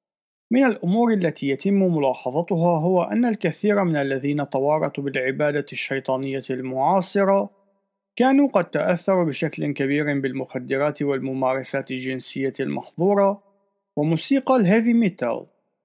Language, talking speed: Arabic, 100 wpm